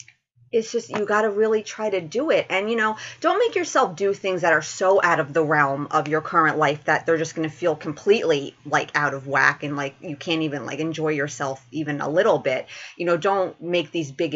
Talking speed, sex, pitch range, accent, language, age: 240 wpm, female, 150-210 Hz, American, English, 30-49